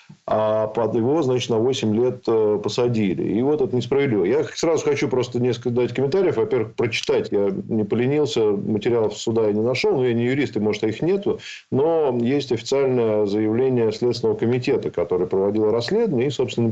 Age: 40-59